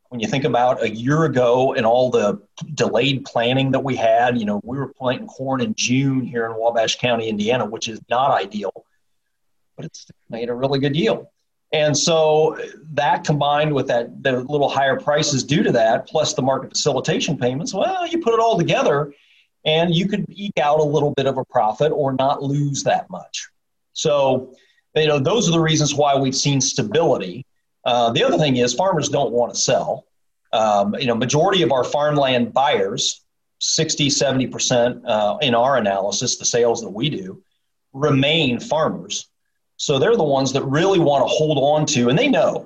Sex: male